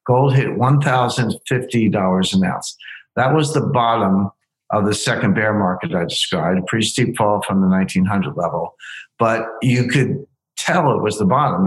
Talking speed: 165 wpm